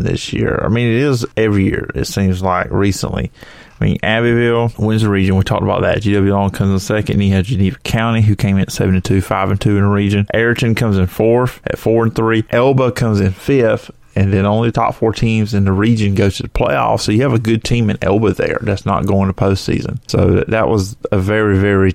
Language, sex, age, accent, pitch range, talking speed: English, male, 30-49, American, 95-115 Hz, 240 wpm